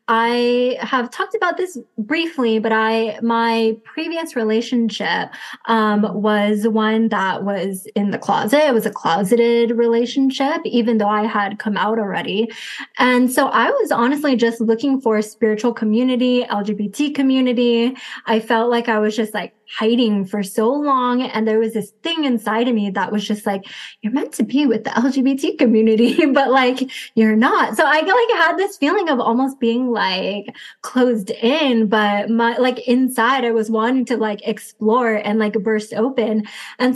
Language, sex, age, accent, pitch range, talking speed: English, female, 20-39, American, 220-270 Hz, 175 wpm